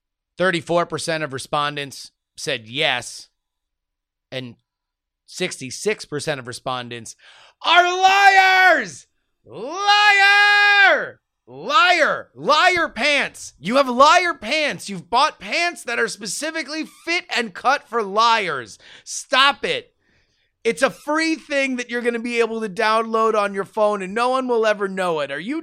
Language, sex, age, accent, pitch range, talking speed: English, male, 30-49, American, 180-260 Hz, 130 wpm